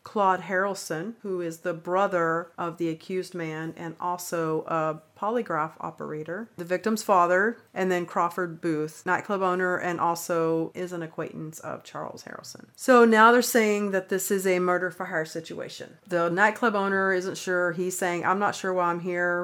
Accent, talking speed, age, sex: American, 170 wpm, 40-59, female